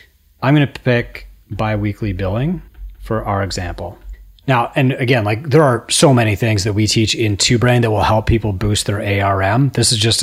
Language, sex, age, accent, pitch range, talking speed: English, male, 30-49, American, 105-130 Hz, 190 wpm